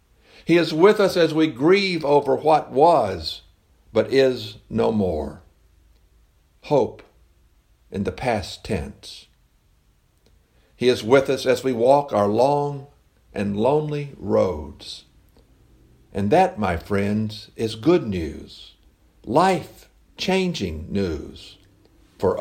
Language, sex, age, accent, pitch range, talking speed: English, male, 60-79, American, 90-140 Hz, 110 wpm